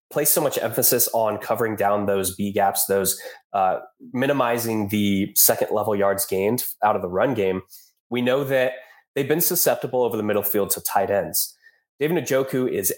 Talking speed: 180 wpm